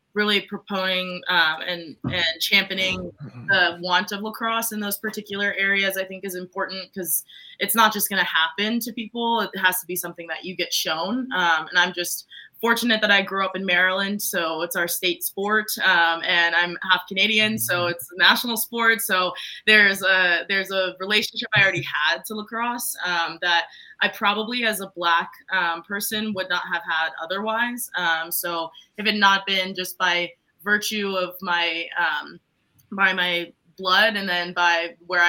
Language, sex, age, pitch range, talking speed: English, female, 20-39, 175-205 Hz, 180 wpm